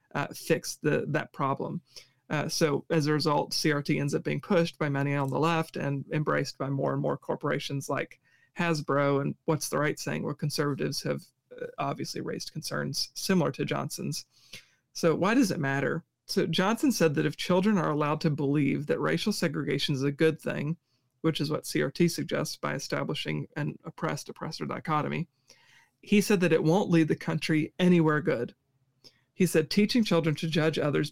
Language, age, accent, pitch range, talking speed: English, 40-59, American, 145-170 Hz, 175 wpm